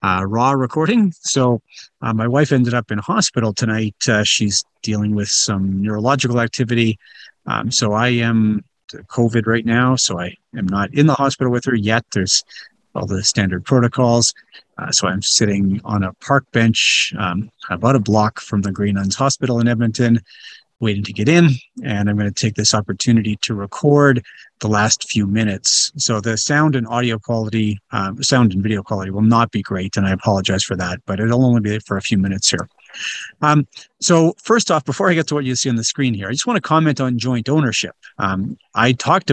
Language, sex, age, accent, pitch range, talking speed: English, male, 40-59, American, 105-130 Hz, 200 wpm